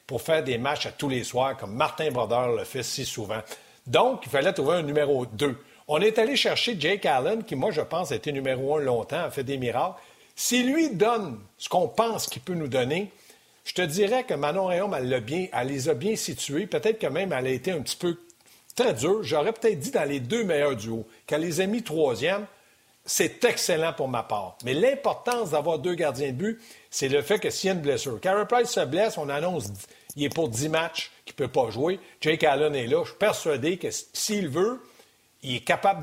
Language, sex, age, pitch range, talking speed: French, male, 60-79, 135-200 Hz, 225 wpm